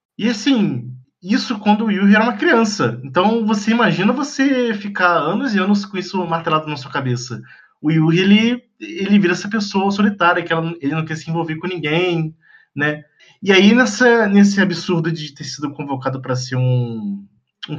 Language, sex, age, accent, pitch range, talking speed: Portuguese, male, 20-39, Brazilian, 160-220 Hz, 180 wpm